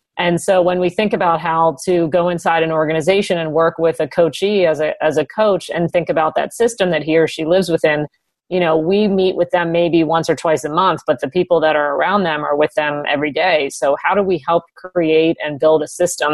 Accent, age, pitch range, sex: American, 40-59, 155-175 Hz, female